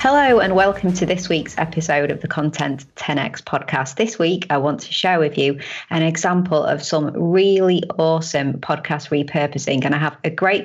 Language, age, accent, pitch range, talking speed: English, 30-49, British, 150-180 Hz, 185 wpm